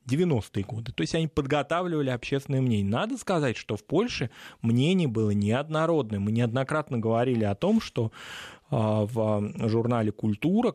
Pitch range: 110-145 Hz